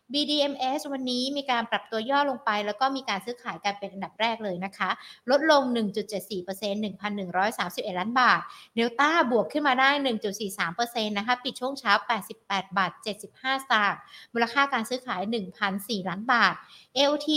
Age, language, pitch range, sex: 60-79, Thai, 195-250 Hz, female